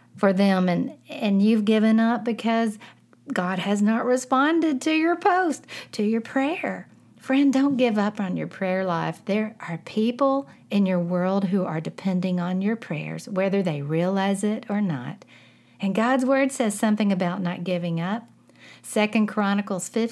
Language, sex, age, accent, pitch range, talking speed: English, female, 50-69, American, 180-235 Hz, 165 wpm